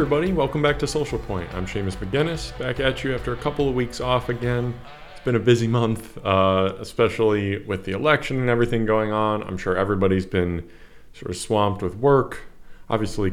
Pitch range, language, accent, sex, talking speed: 95-125 Hz, English, American, male, 200 wpm